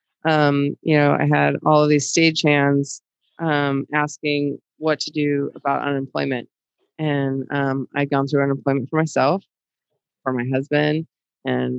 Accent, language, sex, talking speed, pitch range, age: American, English, female, 145 wpm, 135-150 Hz, 20-39